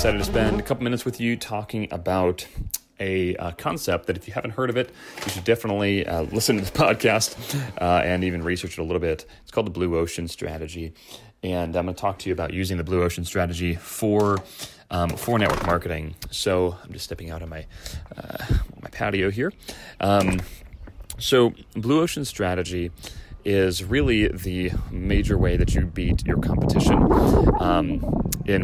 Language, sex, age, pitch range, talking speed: English, male, 30-49, 85-105 Hz, 180 wpm